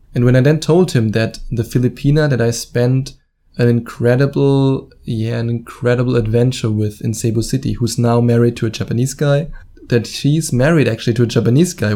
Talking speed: 185 wpm